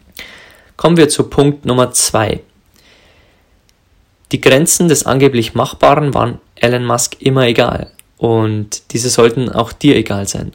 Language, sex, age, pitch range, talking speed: German, male, 20-39, 105-130 Hz, 130 wpm